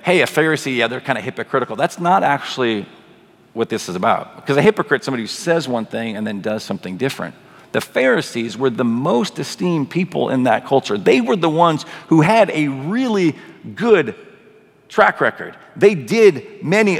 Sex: male